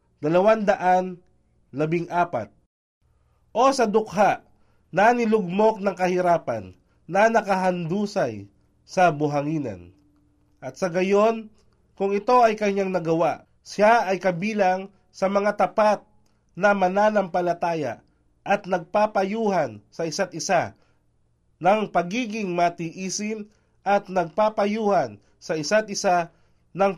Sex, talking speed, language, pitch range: male, 95 wpm, Filipino, 160-210 Hz